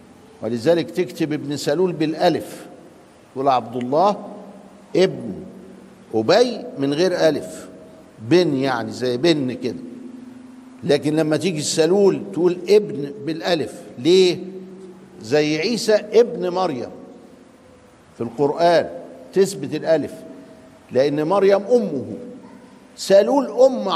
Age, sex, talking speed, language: 50-69, male, 100 wpm, Arabic